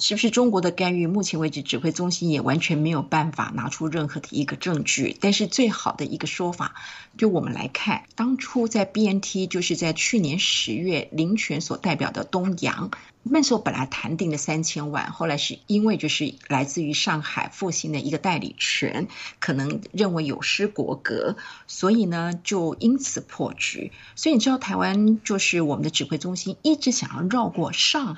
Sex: female